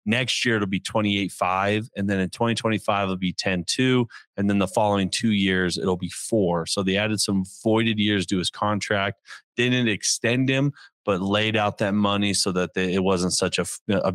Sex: male